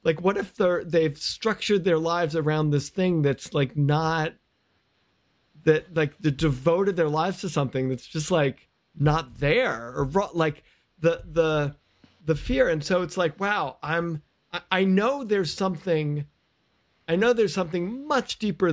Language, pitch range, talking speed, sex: English, 135-170 Hz, 155 wpm, male